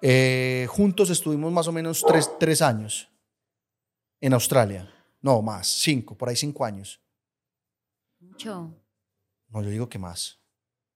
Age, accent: 30-49, Colombian